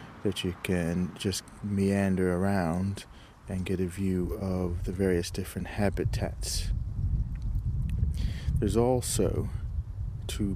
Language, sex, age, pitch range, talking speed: English, male, 30-49, 85-95 Hz, 100 wpm